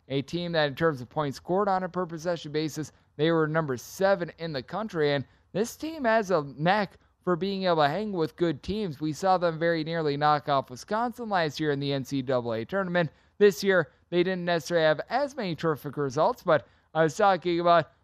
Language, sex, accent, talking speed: English, male, American, 205 wpm